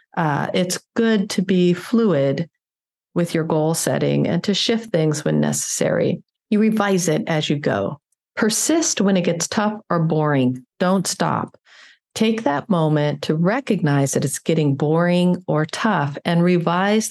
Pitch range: 150-185 Hz